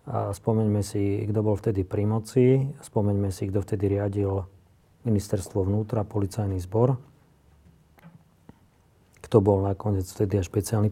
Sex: male